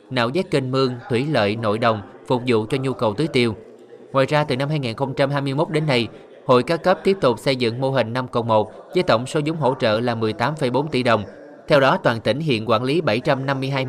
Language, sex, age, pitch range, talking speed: Vietnamese, male, 20-39, 115-150 Hz, 225 wpm